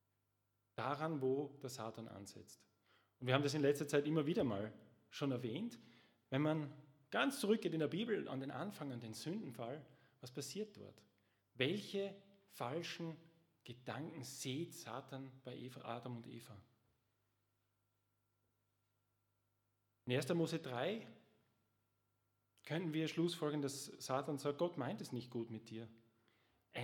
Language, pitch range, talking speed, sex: German, 105-145 Hz, 135 wpm, male